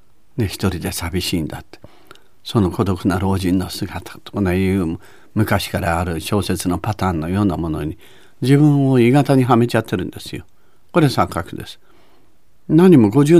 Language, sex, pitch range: Japanese, male, 90-135 Hz